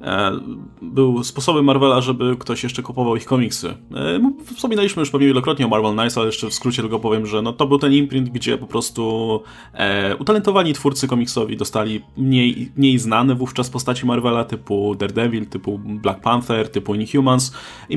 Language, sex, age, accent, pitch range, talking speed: Polish, male, 20-39, native, 110-140 Hz, 175 wpm